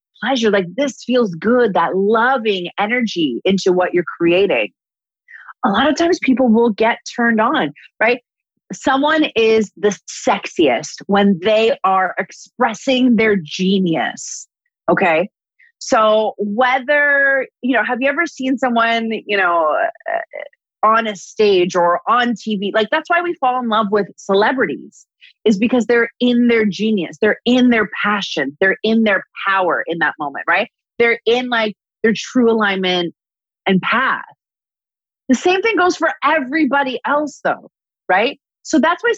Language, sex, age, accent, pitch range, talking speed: English, female, 30-49, American, 200-270 Hz, 150 wpm